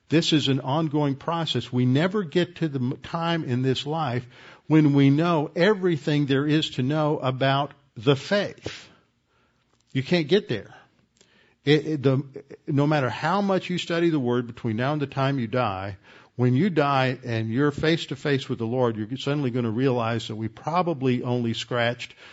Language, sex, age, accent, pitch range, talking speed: English, male, 50-69, American, 115-145 Hz, 170 wpm